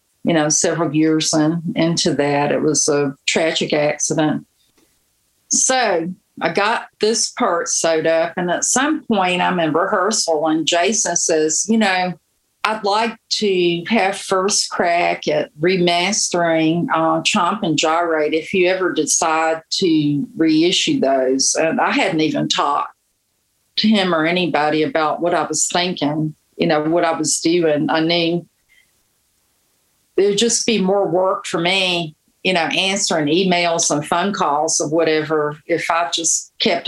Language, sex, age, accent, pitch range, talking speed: English, female, 50-69, American, 160-190 Hz, 150 wpm